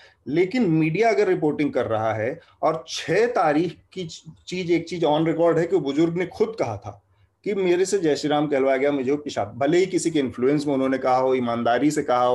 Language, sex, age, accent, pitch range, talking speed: Hindi, male, 30-49, native, 145-200 Hz, 215 wpm